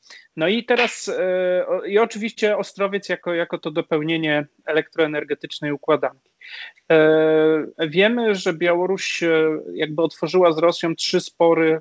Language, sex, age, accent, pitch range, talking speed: Polish, male, 30-49, native, 155-185 Hz, 105 wpm